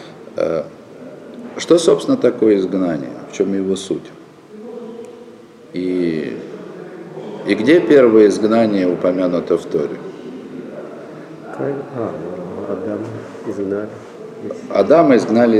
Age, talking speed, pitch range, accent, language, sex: 50-69, 70 wpm, 95-125 Hz, native, Russian, male